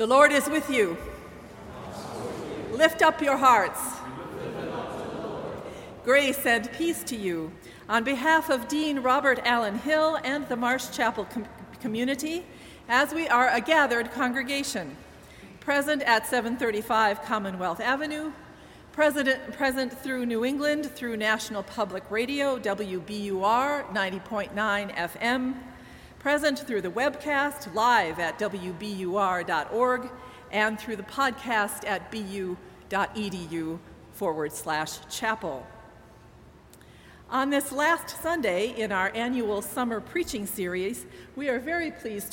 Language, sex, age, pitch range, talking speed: English, female, 50-69, 210-280 Hz, 110 wpm